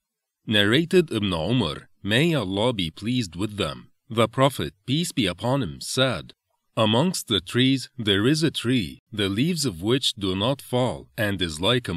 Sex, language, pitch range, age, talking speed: male, English, 95-135 Hz, 40-59, 170 wpm